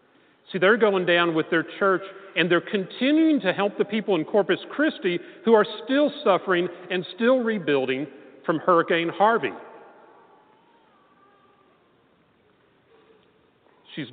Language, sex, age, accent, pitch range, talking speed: English, male, 40-59, American, 170-255 Hz, 120 wpm